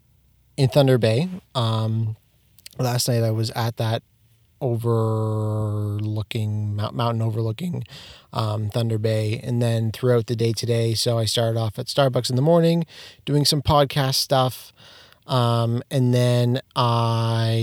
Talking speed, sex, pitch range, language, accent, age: 135 wpm, male, 110-125 Hz, English, American, 30-49